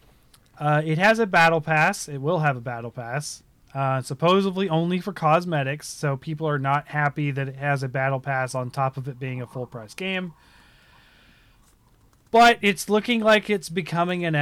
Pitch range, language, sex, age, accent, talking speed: 130-150 Hz, English, male, 30-49, American, 185 wpm